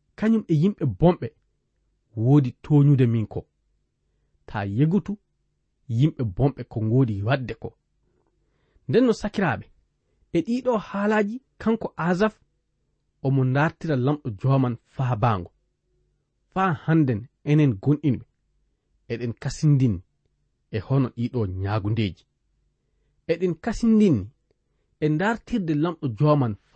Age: 40-59